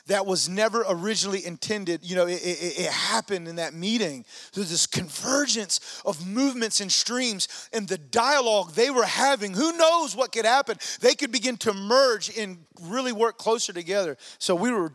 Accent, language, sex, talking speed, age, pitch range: American, English, male, 180 wpm, 30-49, 170-210 Hz